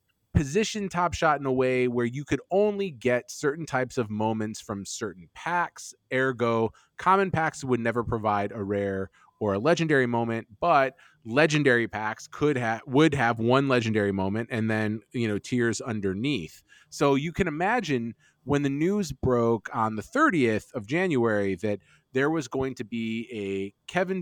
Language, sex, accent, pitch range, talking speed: English, male, American, 110-150 Hz, 165 wpm